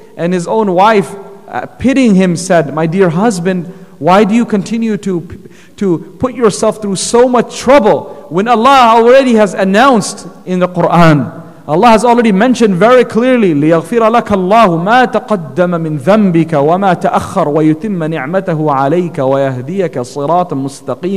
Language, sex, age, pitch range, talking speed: English, male, 40-59, 175-215 Hz, 130 wpm